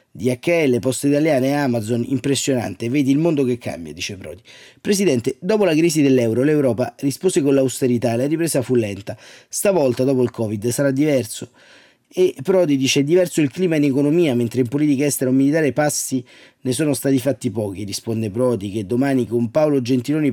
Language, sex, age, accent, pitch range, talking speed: Italian, male, 30-49, native, 120-140 Hz, 175 wpm